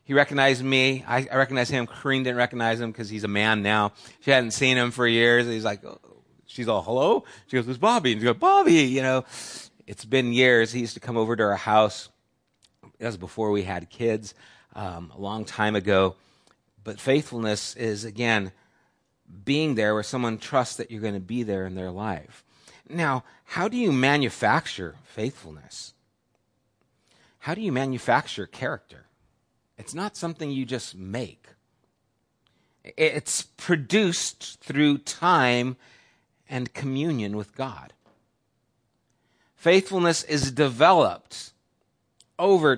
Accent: American